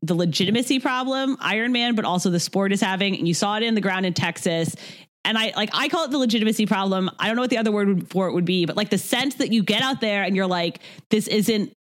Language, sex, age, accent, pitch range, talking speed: English, female, 30-49, American, 175-240 Hz, 275 wpm